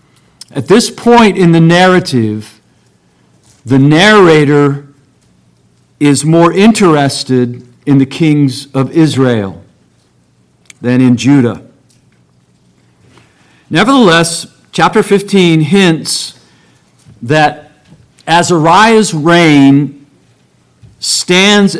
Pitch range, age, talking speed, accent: 120-170 Hz, 50-69, 75 wpm, American